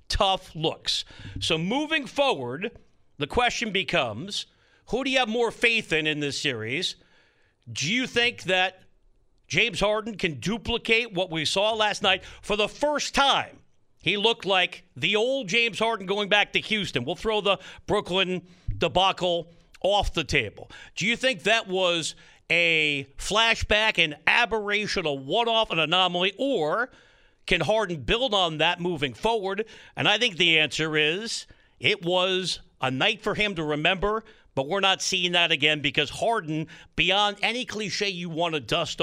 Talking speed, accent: 160 wpm, American